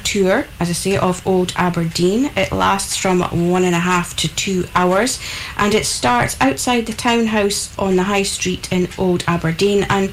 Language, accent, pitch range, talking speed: English, British, 175-205 Hz, 185 wpm